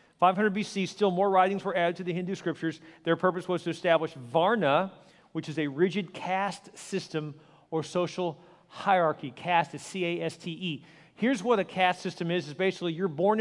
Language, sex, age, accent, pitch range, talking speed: English, male, 40-59, American, 155-190 Hz, 175 wpm